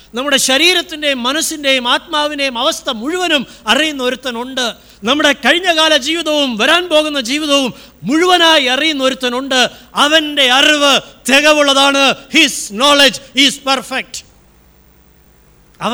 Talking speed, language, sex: 85 wpm, Malayalam, male